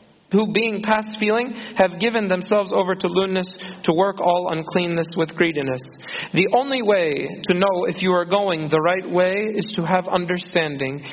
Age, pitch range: 40-59, 170-210 Hz